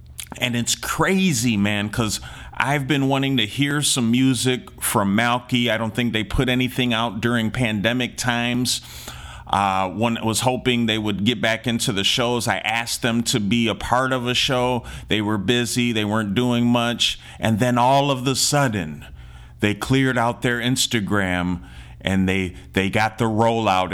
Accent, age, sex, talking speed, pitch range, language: American, 30-49, male, 180 wpm, 105-135 Hz, English